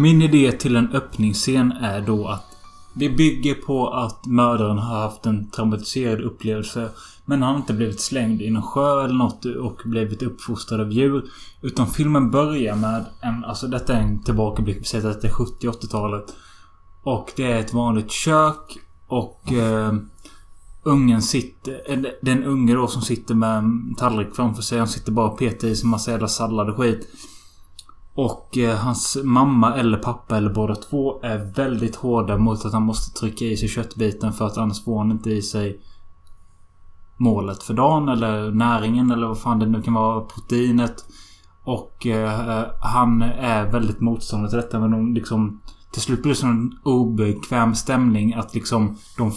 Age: 20-39